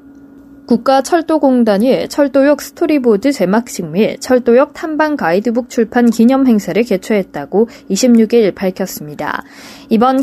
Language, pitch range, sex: Korean, 215-280 Hz, female